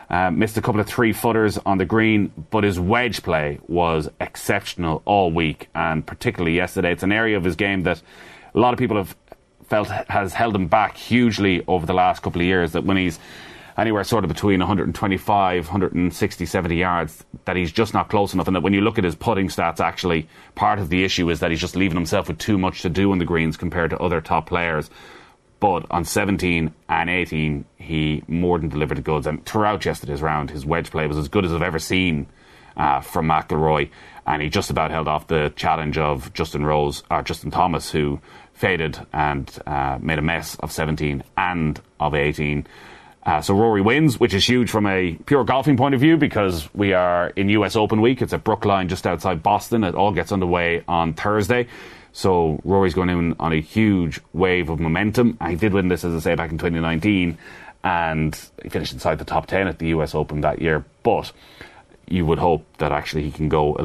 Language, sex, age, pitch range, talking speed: English, male, 30-49, 80-100 Hz, 210 wpm